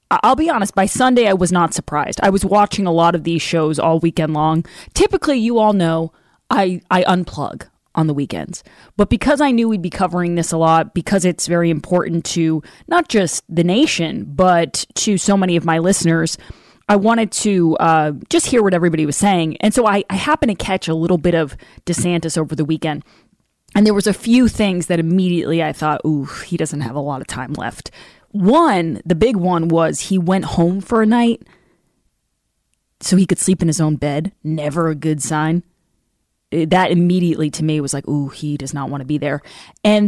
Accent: American